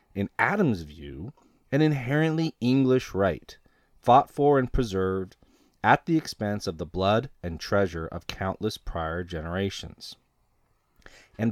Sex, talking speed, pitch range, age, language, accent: male, 125 wpm, 90-125 Hz, 30-49, English, American